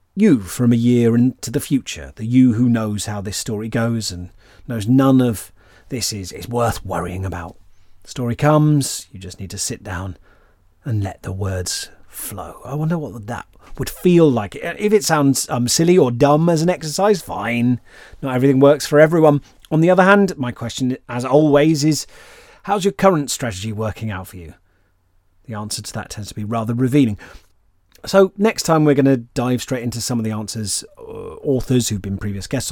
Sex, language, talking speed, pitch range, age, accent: male, English, 195 wpm, 110-145 Hz, 30-49, British